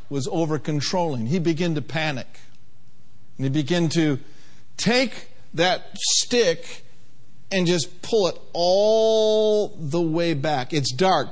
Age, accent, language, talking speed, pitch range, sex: 50-69, American, English, 120 wpm, 145-220 Hz, male